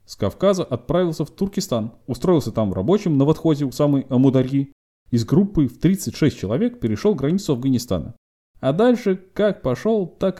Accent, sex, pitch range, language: native, male, 110-180 Hz, Russian